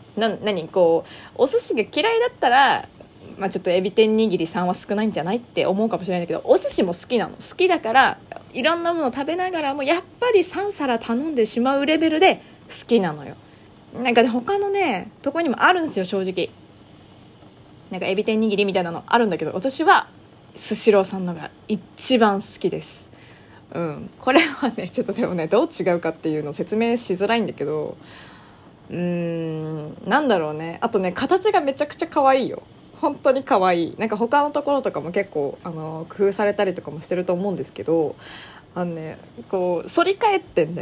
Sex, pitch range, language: female, 175-275 Hz, Japanese